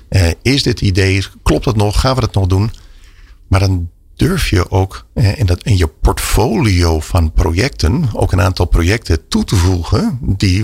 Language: Dutch